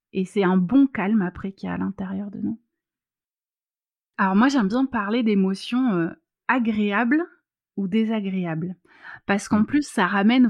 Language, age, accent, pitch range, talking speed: French, 30-49, French, 190-240 Hz, 155 wpm